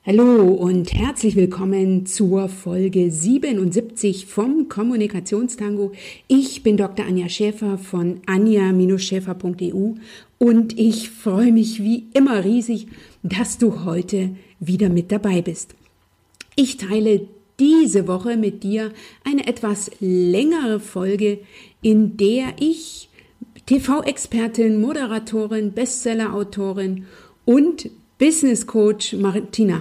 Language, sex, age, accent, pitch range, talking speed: German, female, 50-69, German, 190-235 Hz, 100 wpm